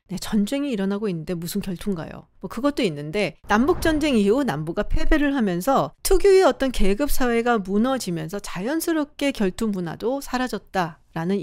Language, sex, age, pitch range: Korean, female, 40-59, 185-280 Hz